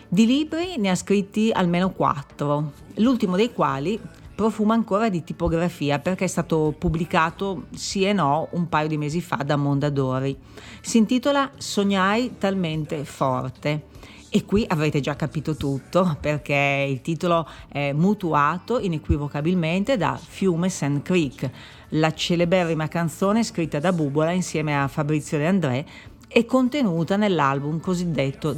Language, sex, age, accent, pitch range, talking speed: Italian, female, 40-59, native, 145-200 Hz, 135 wpm